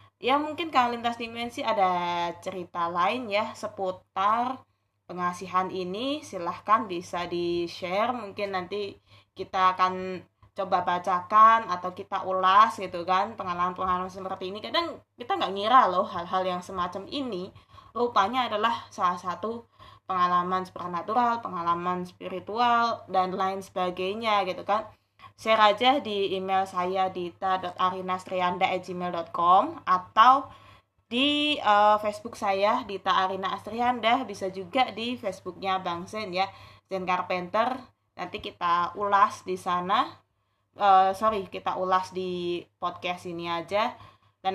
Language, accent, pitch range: Indonesian, native, 180-215 Hz